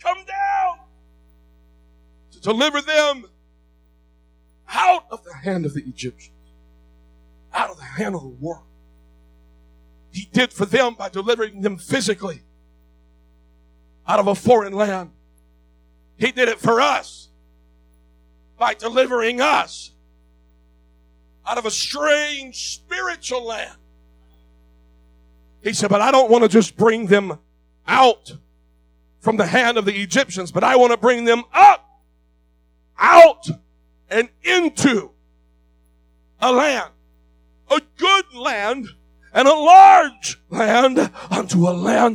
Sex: male